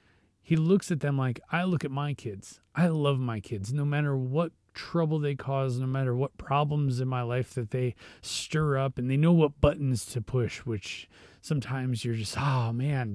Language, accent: English, American